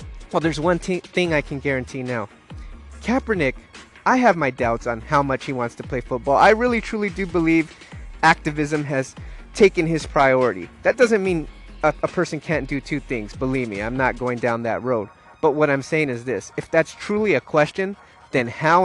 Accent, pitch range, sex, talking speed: American, 130-185 Hz, male, 195 wpm